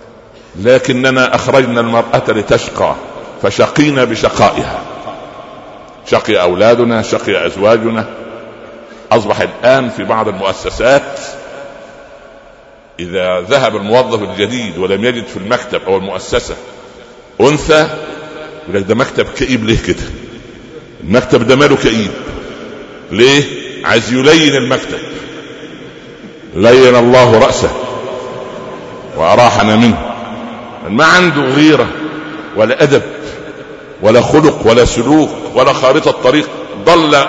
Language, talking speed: Arabic, 90 wpm